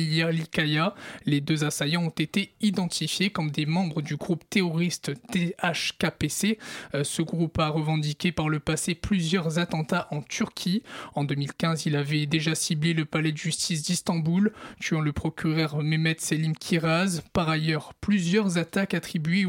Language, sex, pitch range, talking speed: French, male, 155-195 Hz, 140 wpm